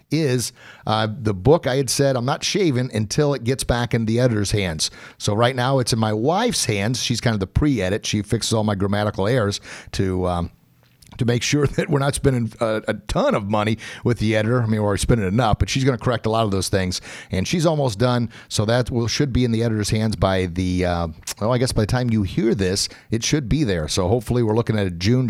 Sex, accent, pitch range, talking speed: male, American, 105-130 Hz, 250 wpm